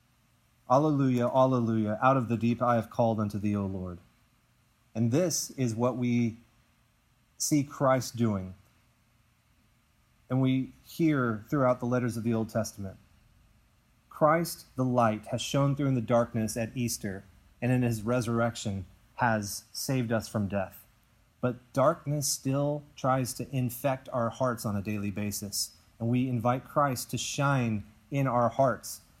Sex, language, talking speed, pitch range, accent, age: male, English, 150 wpm, 105-125 Hz, American, 30-49